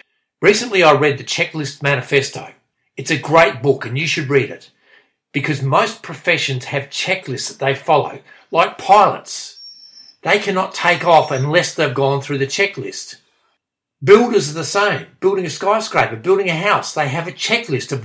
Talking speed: 165 wpm